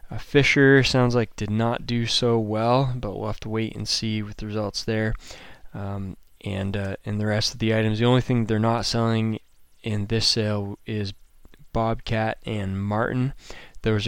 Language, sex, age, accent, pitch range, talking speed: English, male, 20-39, American, 105-120 Hz, 185 wpm